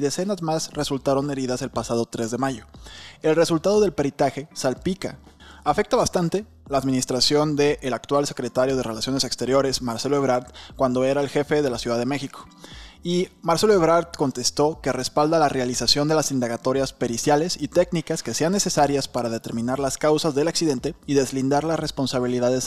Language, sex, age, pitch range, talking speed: Spanish, male, 20-39, 125-155 Hz, 165 wpm